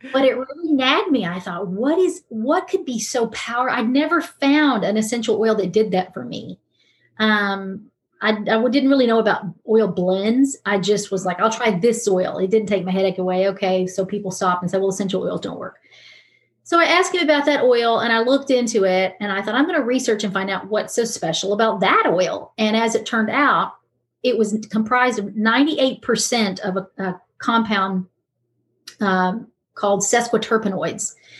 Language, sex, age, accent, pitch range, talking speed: English, female, 40-59, American, 195-245 Hz, 200 wpm